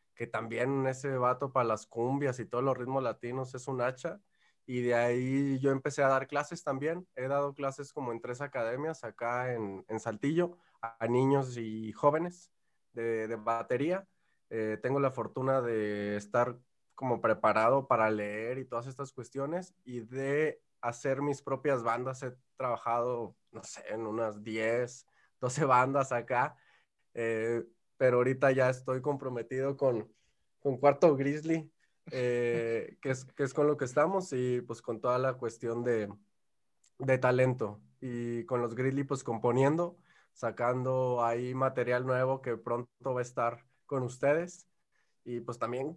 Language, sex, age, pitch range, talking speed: Spanish, male, 20-39, 115-140 Hz, 160 wpm